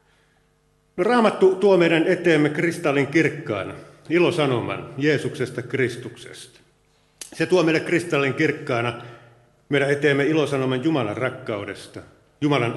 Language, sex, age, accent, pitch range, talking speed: Finnish, male, 50-69, native, 120-155 Hz, 95 wpm